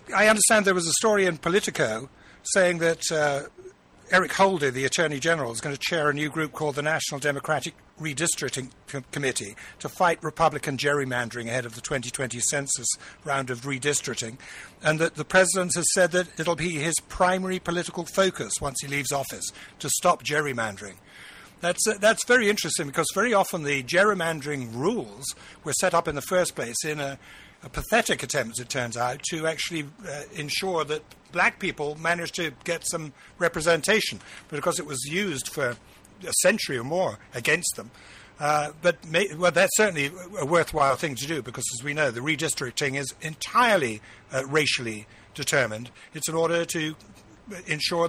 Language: English